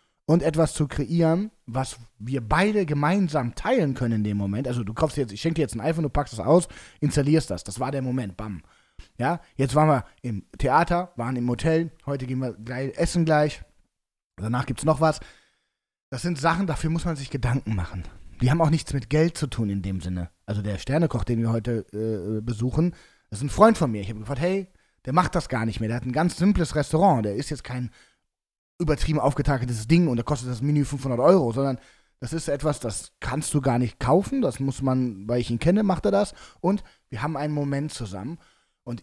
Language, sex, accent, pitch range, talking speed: German, male, German, 110-155 Hz, 225 wpm